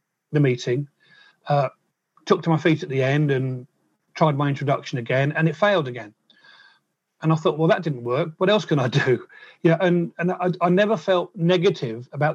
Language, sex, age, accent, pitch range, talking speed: English, male, 40-59, British, 140-175 Hz, 195 wpm